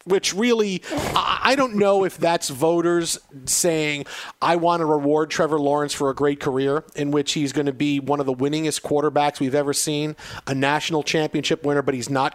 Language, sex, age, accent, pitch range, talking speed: English, male, 40-59, American, 145-185 Hz, 195 wpm